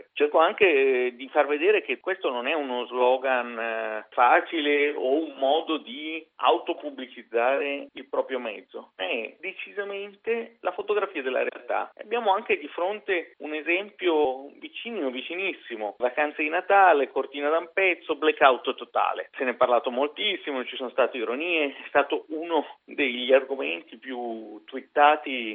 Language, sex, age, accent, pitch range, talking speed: Italian, male, 40-59, native, 135-220 Hz, 135 wpm